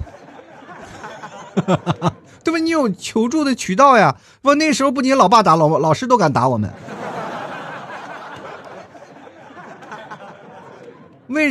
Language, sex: Chinese, male